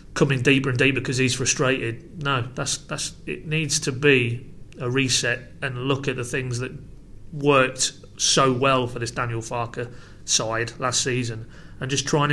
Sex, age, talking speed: male, 30-49, 175 wpm